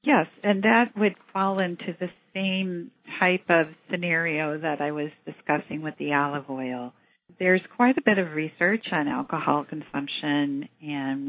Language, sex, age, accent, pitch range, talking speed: English, female, 50-69, American, 145-185 Hz, 155 wpm